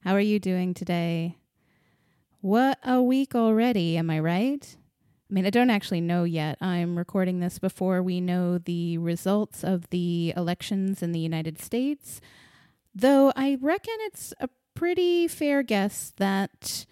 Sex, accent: female, American